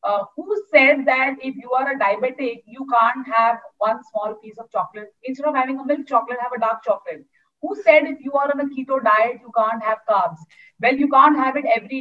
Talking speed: 230 wpm